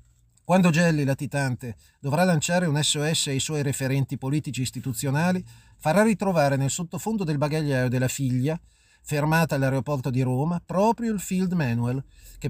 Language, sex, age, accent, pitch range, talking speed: Italian, male, 40-59, native, 130-175 Hz, 140 wpm